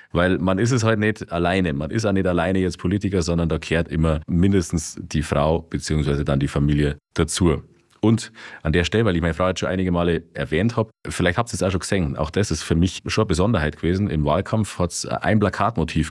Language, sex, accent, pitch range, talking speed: German, male, German, 75-95 Hz, 230 wpm